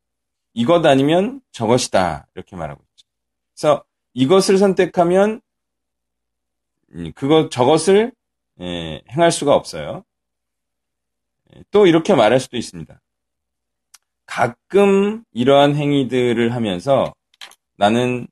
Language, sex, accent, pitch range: Korean, male, native, 105-175 Hz